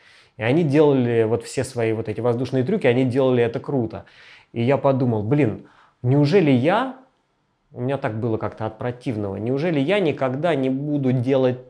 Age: 20-39